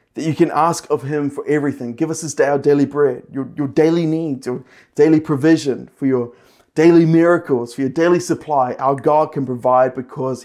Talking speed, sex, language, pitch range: 200 wpm, male, English, 130-160 Hz